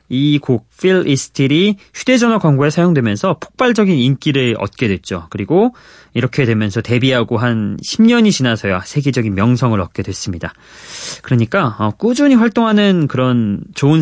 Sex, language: male, Korean